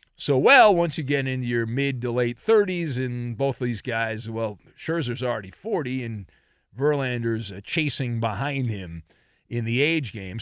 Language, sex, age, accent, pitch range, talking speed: English, male, 40-59, American, 120-170 Hz, 165 wpm